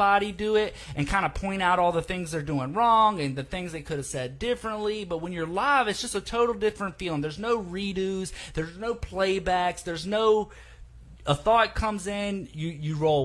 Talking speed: 210 wpm